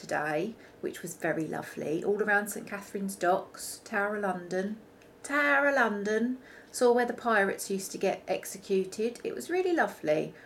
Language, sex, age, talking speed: English, female, 30-49, 160 wpm